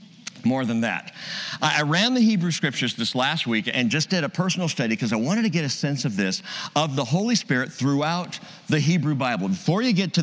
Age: 50-69